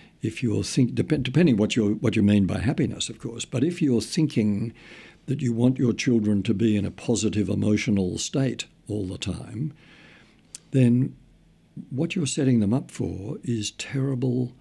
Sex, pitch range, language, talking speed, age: male, 105-130 Hz, English, 175 wpm, 60-79